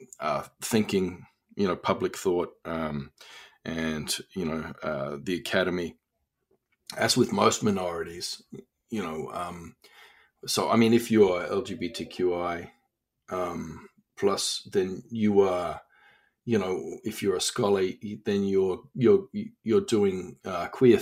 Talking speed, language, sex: 125 wpm, English, male